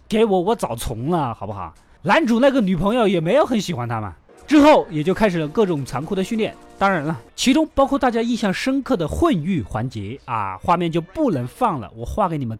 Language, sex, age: Chinese, male, 20-39